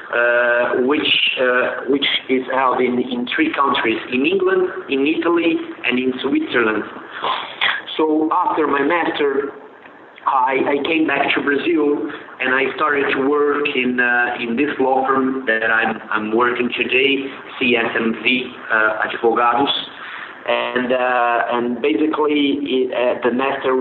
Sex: male